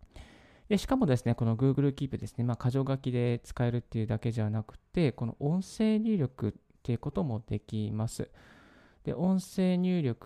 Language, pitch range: Japanese, 115-150 Hz